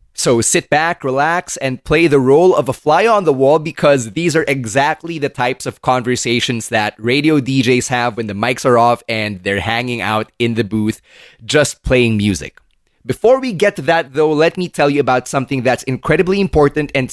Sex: male